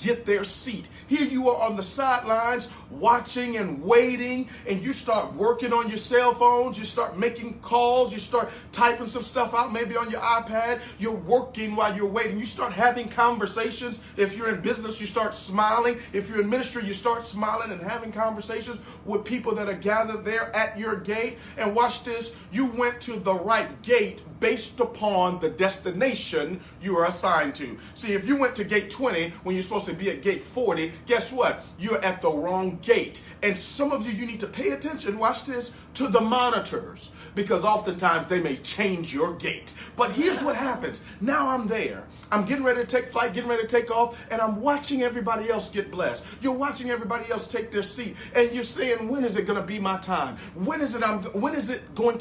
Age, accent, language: 40-59, American, English